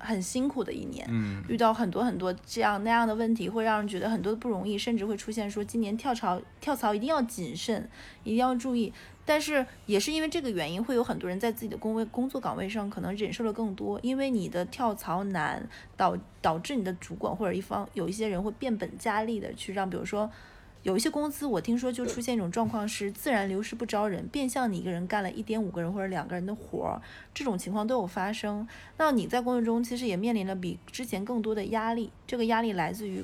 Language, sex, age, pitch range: Chinese, female, 20-39, 195-240 Hz